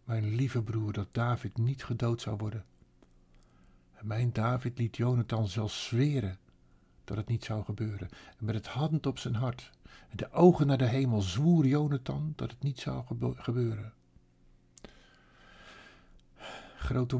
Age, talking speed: 50-69, 145 wpm